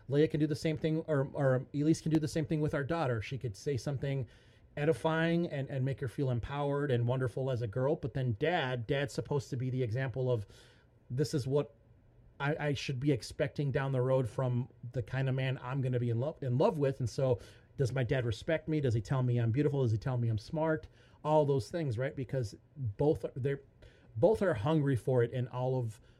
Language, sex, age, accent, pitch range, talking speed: English, male, 30-49, American, 120-150 Hz, 235 wpm